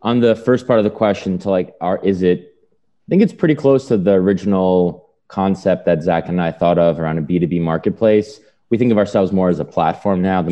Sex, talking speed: male, 245 wpm